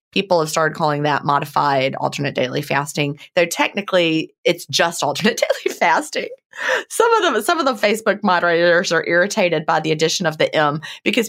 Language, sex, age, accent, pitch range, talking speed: English, female, 30-49, American, 150-195 Hz, 175 wpm